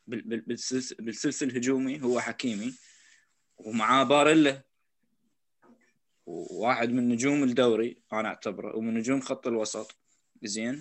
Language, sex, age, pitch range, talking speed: Arabic, male, 20-39, 120-155 Hz, 95 wpm